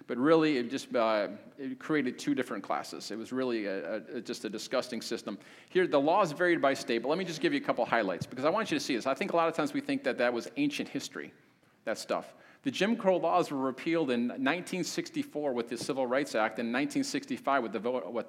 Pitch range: 125-180 Hz